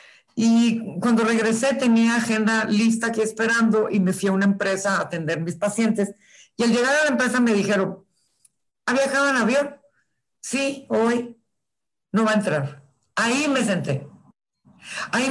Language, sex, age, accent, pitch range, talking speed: Spanish, female, 50-69, Mexican, 200-250 Hz, 155 wpm